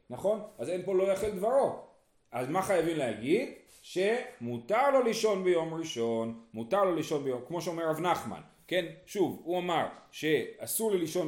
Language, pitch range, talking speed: Hebrew, 150-230 Hz, 150 wpm